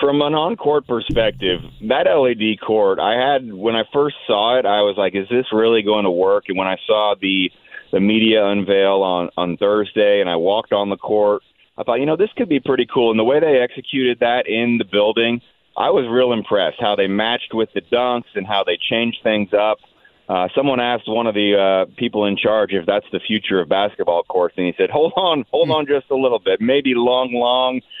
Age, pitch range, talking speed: 30-49, 100-125 Hz, 225 wpm